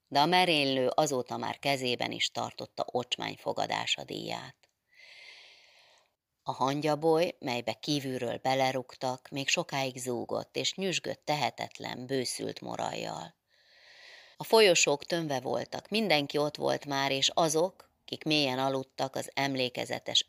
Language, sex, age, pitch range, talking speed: Hungarian, female, 30-49, 130-170 Hz, 110 wpm